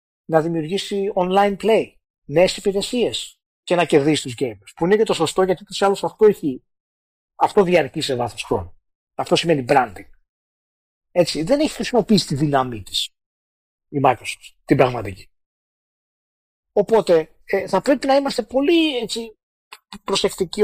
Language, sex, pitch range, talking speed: Greek, male, 135-210 Hz, 135 wpm